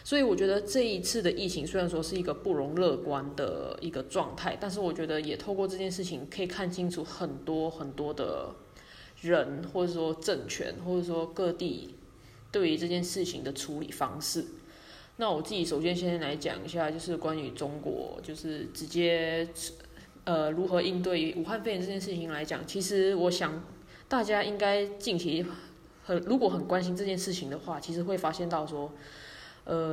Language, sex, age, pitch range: Chinese, female, 10-29, 160-190 Hz